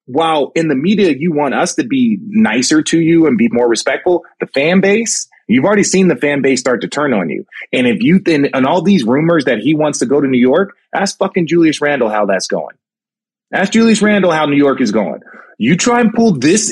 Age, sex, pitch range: 30-49, male, 145-220 Hz